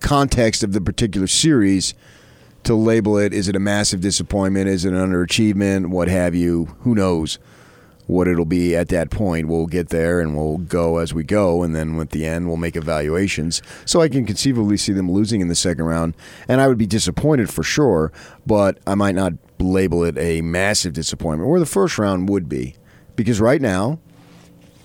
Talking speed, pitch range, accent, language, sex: 195 wpm, 85-115 Hz, American, English, male